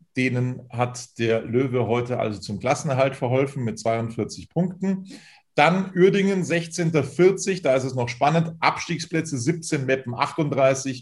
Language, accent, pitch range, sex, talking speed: German, German, 115-155 Hz, male, 130 wpm